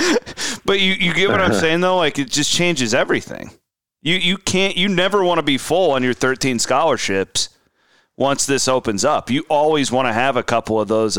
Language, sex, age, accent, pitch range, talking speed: English, male, 30-49, American, 110-145 Hz, 210 wpm